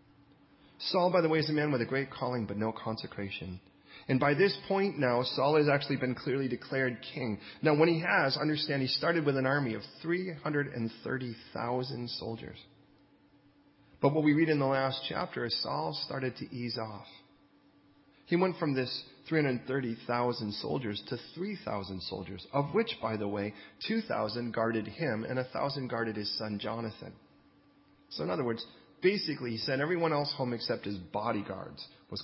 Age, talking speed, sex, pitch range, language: 30-49, 170 wpm, male, 110-150 Hz, English